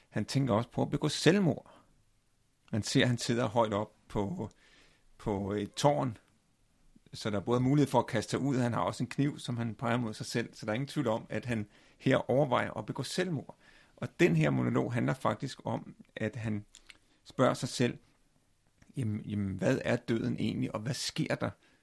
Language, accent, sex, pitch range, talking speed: Danish, native, male, 100-125 Hz, 205 wpm